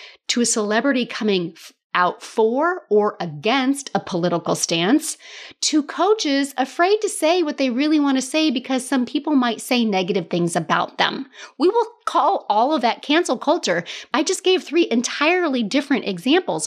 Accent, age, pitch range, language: American, 30-49, 205-310 Hz, English